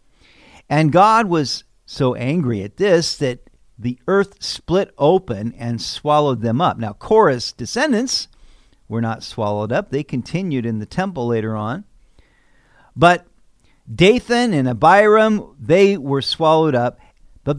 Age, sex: 50-69, male